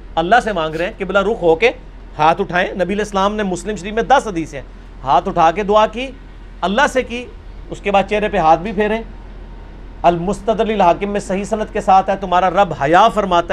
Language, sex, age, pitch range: English, male, 40-59, 170-230 Hz